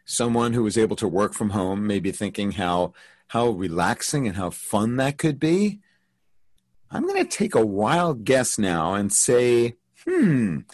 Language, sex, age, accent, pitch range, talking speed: English, male, 40-59, American, 105-150 Hz, 175 wpm